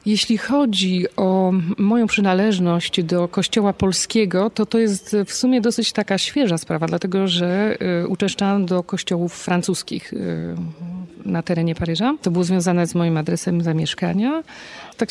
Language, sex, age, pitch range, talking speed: Polish, female, 40-59, 175-220 Hz, 135 wpm